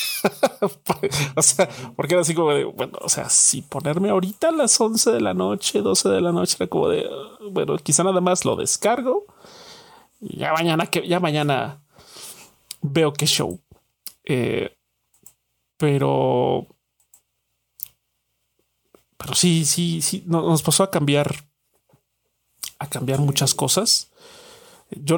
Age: 30-49